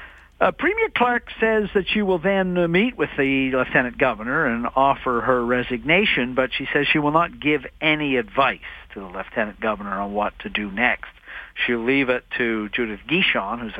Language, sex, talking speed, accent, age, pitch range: English, male, 185 wpm, American, 50-69, 125-175 Hz